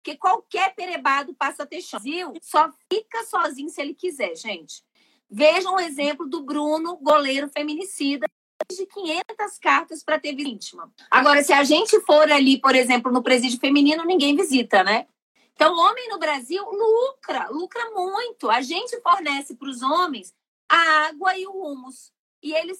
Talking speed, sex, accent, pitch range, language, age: 170 wpm, female, Brazilian, 275-355 Hz, Portuguese, 30-49